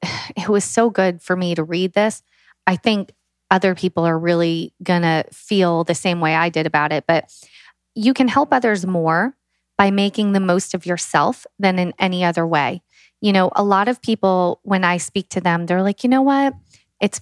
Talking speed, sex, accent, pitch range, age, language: 200 wpm, female, American, 180-225 Hz, 30-49, English